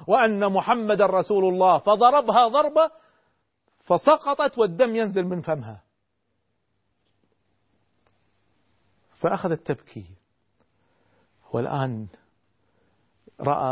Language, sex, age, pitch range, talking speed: Arabic, male, 40-59, 105-150 Hz, 65 wpm